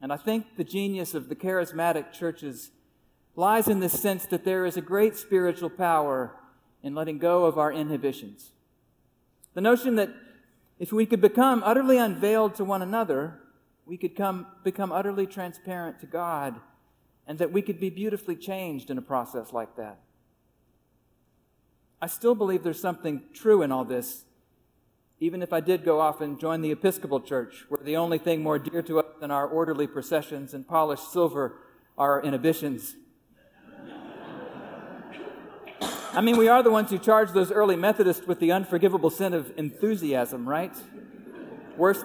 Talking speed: 165 wpm